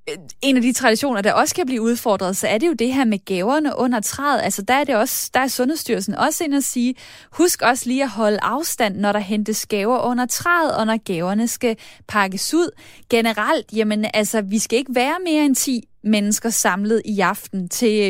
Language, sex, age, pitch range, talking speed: Danish, female, 20-39, 215-285 Hz, 210 wpm